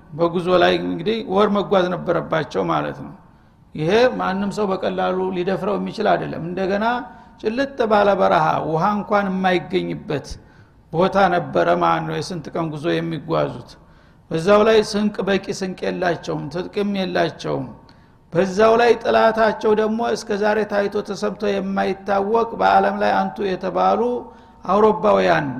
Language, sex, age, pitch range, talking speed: Amharic, male, 60-79, 185-220 Hz, 120 wpm